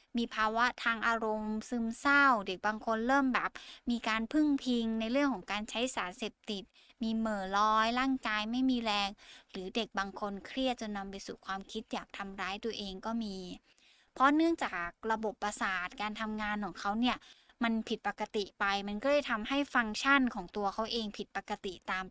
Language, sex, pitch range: Thai, female, 205-250 Hz